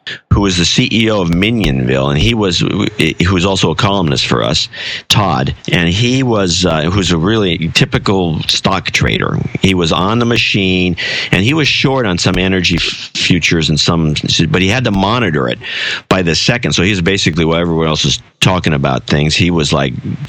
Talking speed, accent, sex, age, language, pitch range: 190 wpm, American, male, 50-69, English, 80-100 Hz